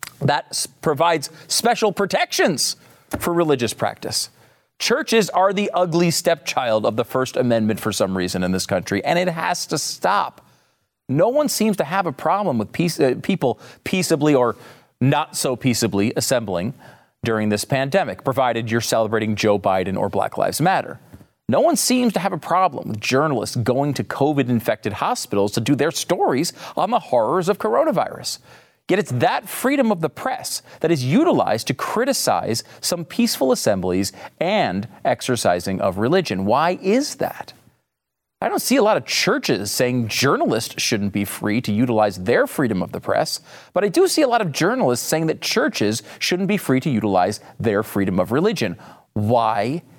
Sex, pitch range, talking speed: male, 115-175 Hz, 170 wpm